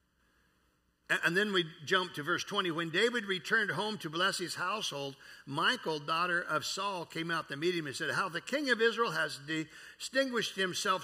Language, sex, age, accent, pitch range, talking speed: English, male, 60-79, American, 130-195 Hz, 185 wpm